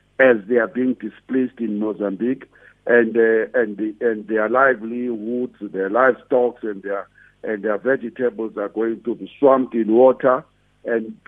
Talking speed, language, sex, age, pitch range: 155 wpm, English, male, 50-69, 110-135 Hz